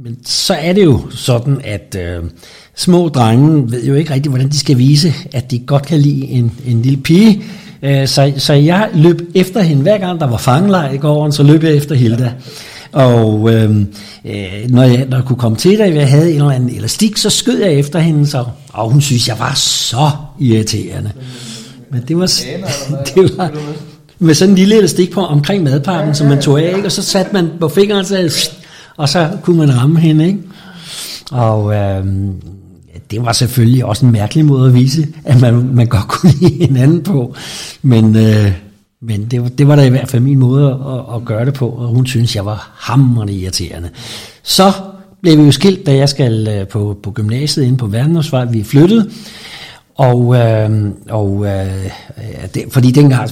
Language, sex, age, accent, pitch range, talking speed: Danish, male, 60-79, native, 115-155 Hz, 200 wpm